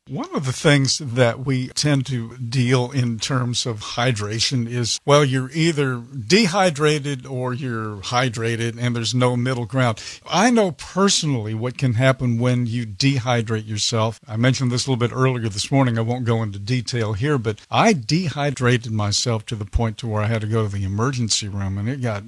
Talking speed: 190 wpm